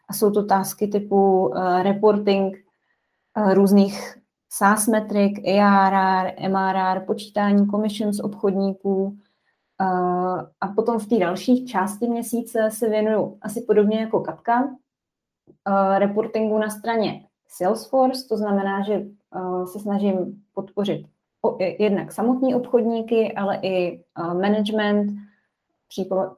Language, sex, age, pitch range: Czech, female, 20-39, 185-210 Hz